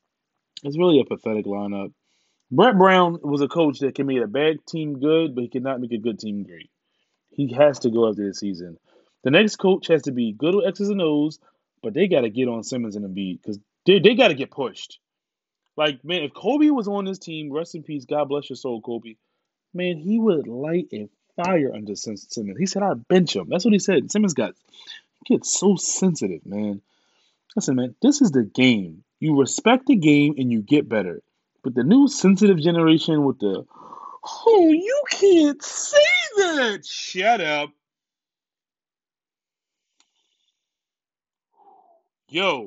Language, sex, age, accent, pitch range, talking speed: English, male, 20-39, American, 125-195 Hz, 180 wpm